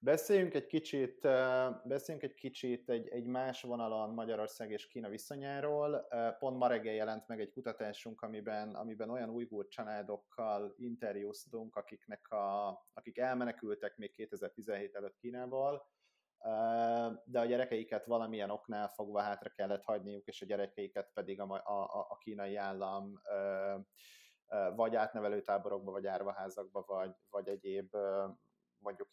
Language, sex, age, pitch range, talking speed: Hungarian, male, 30-49, 100-120 Hz, 130 wpm